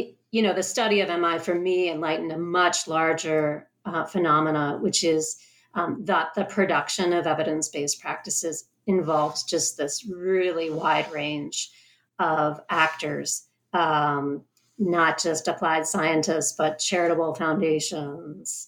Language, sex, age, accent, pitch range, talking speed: English, female, 40-59, American, 155-195 Hz, 125 wpm